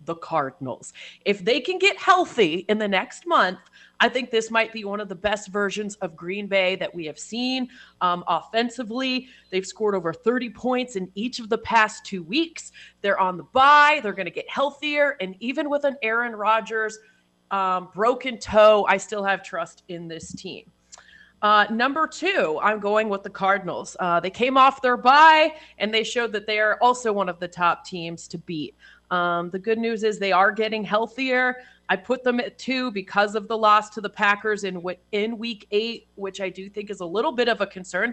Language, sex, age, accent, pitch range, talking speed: English, female, 30-49, American, 190-245 Hz, 210 wpm